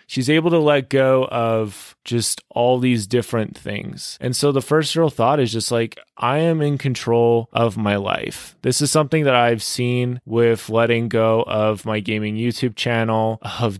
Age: 20-39